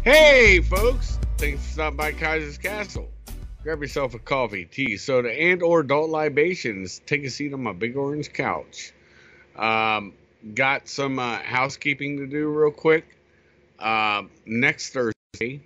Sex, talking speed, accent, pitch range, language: male, 145 wpm, American, 105-135 Hz, English